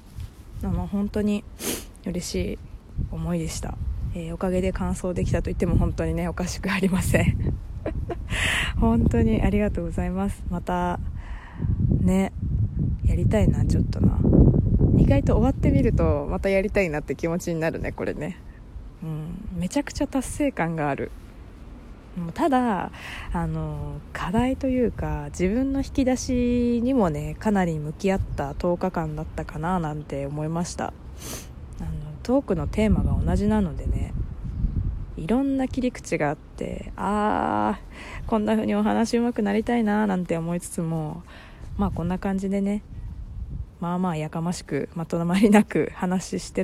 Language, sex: Japanese, female